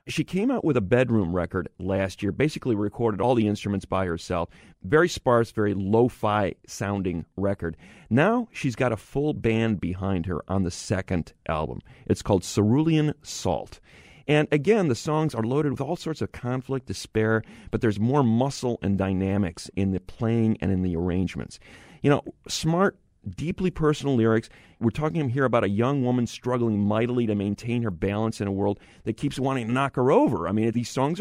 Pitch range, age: 100-130 Hz, 40-59